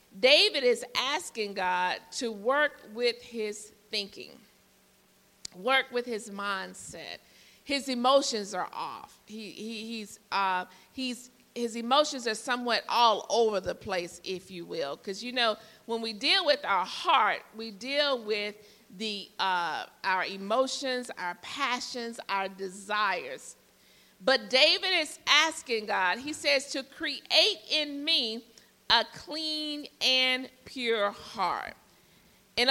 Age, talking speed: 50-69, 130 wpm